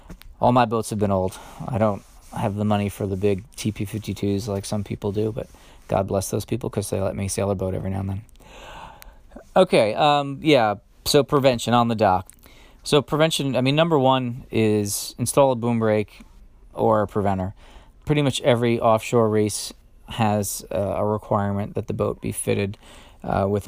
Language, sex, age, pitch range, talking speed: English, male, 20-39, 100-115 Hz, 180 wpm